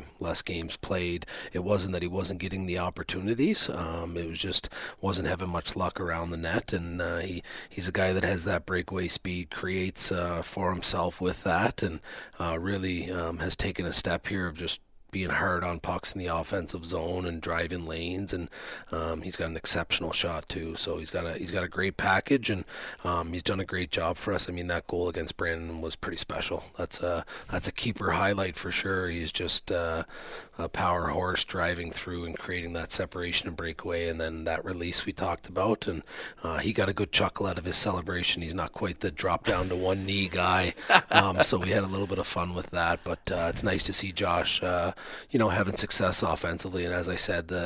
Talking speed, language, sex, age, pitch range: 220 wpm, English, male, 30-49, 85-95 Hz